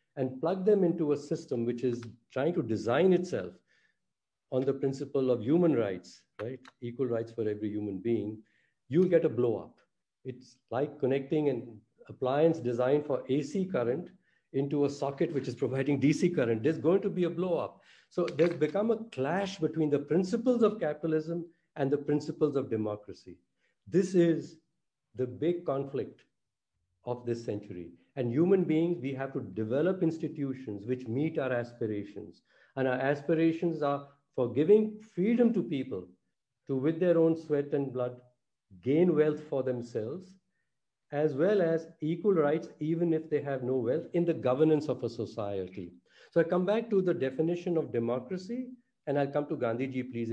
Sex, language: male, English